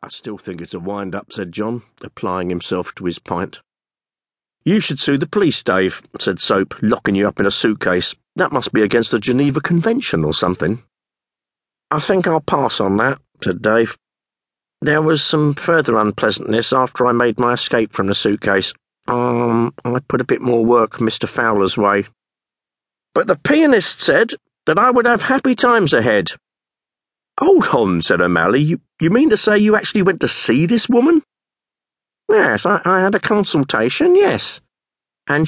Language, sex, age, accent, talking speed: English, male, 50-69, British, 175 wpm